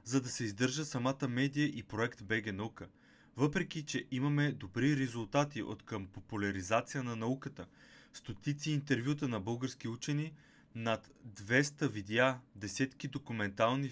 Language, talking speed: Bulgarian, 130 wpm